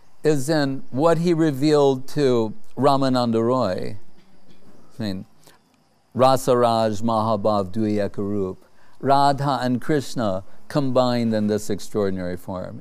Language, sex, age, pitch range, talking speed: English, male, 60-79, 110-145 Hz, 90 wpm